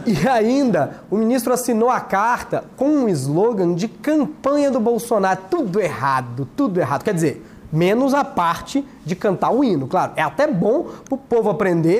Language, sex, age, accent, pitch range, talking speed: Portuguese, male, 20-39, Brazilian, 210-275 Hz, 175 wpm